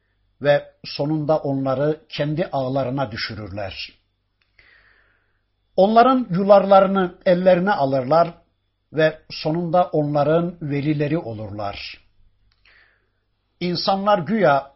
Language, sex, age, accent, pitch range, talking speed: Turkish, male, 60-79, native, 110-180 Hz, 70 wpm